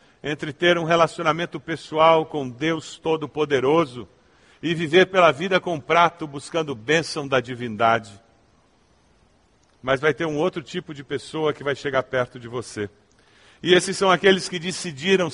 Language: Portuguese